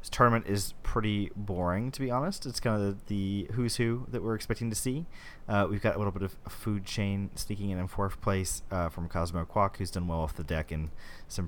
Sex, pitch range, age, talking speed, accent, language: male, 75-100 Hz, 30-49, 245 wpm, American, English